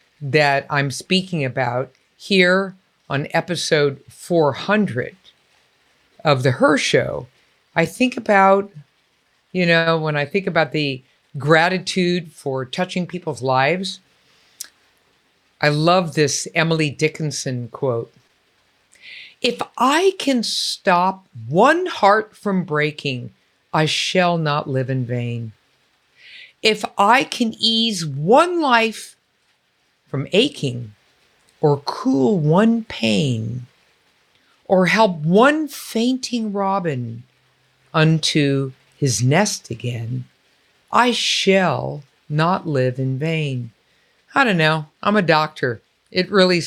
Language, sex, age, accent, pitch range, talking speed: English, female, 50-69, American, 140-195 Hz, 105 wpm